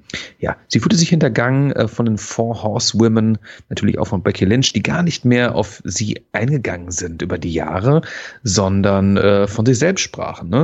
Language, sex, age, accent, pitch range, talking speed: German, male, 40-59, German, 95-125 Hz, 170 wpm